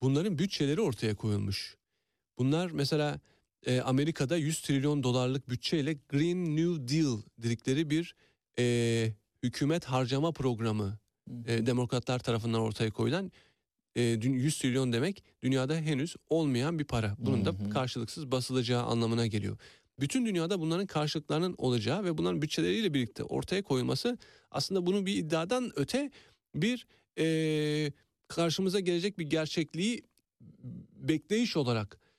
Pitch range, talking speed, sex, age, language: 115-160 Hz, 110 wpm, male, 40-59, Turkish